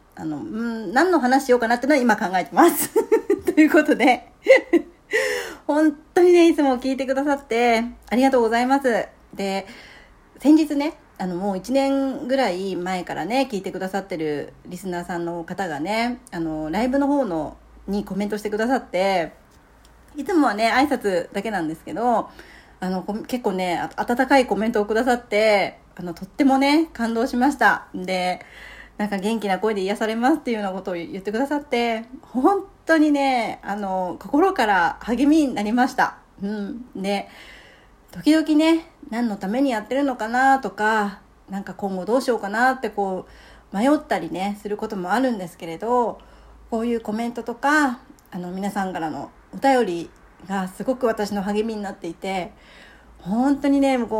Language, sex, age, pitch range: Japanese, female, 40-59, 195-270 Hz